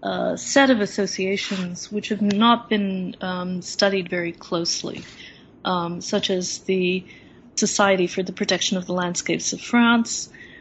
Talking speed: 140 wpm